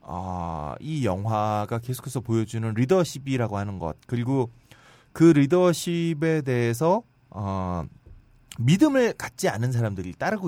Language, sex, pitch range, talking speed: English, male, 105-140 Hz, 105 wpm